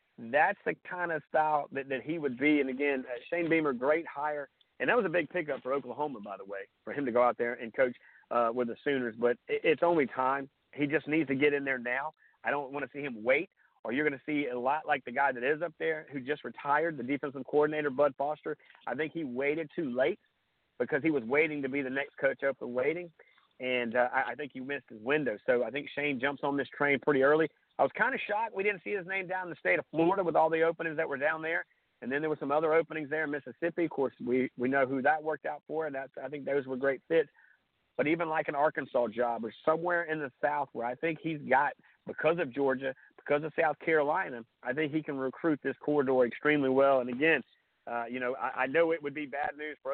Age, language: 40-59, English